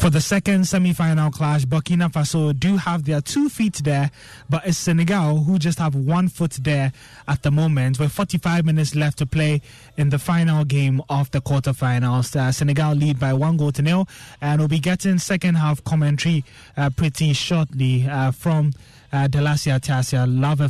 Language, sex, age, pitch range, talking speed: English, male, 20-39, 140-170 Hz, 180 wpm